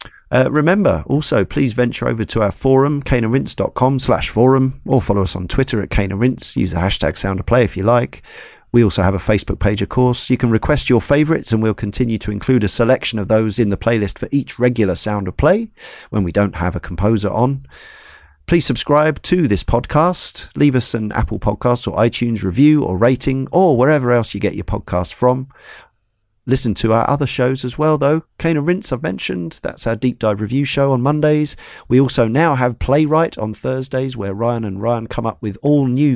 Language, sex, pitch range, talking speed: English, male, 105-135 Hz, 210 wpm